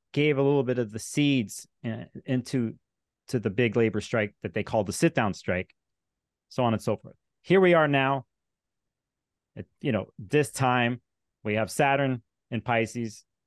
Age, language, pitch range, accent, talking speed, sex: 30-49, English, 110-140 Hz, American, 175 wpm, male